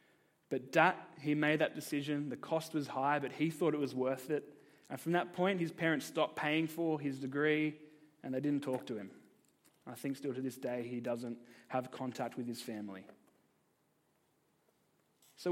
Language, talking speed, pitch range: English, 185 wpm, 130-160 Hz